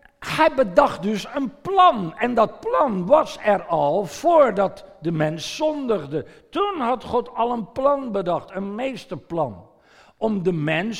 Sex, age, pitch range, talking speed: male, 50-69, 170-230 Hz, 145 wpm